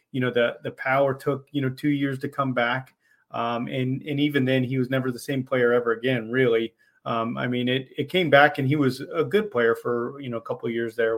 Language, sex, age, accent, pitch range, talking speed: English, male, 30-49, American, 120-140 Hz, 265 wpm